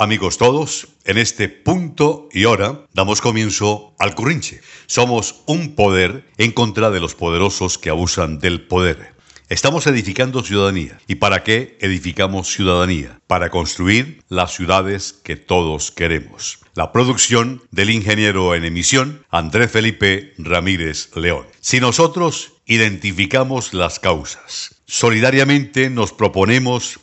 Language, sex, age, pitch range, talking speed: Spanish, male, 60-79, 95-120 Hz, 125 wpm